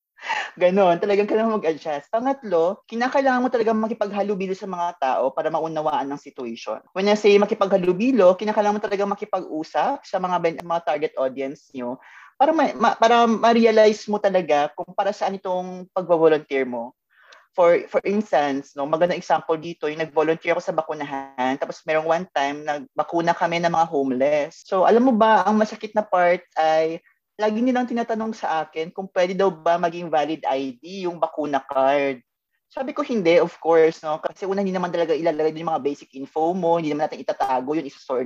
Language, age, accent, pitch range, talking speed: Filipino, 20-39, native, 160-220 Hz, 180 wpm